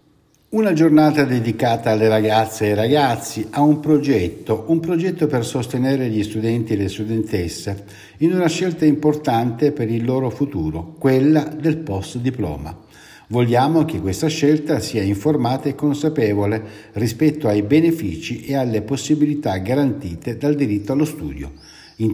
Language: Italian